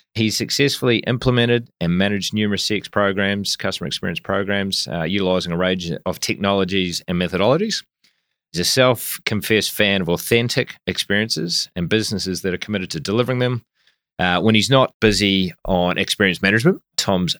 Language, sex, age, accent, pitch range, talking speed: English, male, 30-49, Australian, 90-115 Hz, 150 wpm